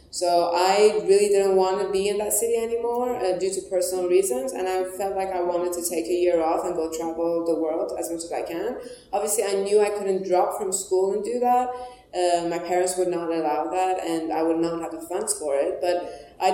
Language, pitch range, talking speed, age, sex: English, 170-205 Hz, 240 wpm, 20-39, female